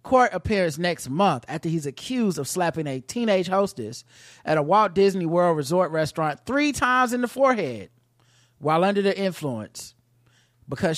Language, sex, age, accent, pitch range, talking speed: English, male, 30-49, American, 125-200 Hz, 160 wpm